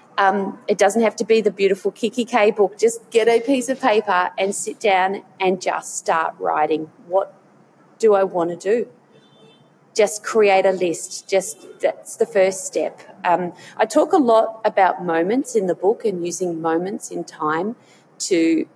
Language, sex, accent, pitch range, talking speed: English, female, Australian, 170-225 Hz, 175 wpm